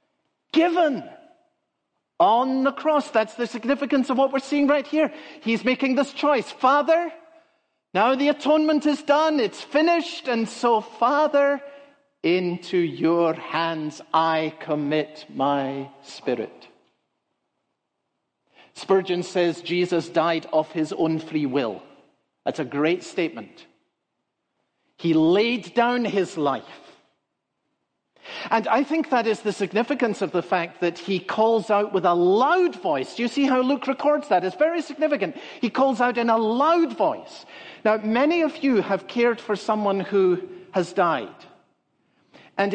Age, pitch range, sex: 50-69, 180-290 Hz, male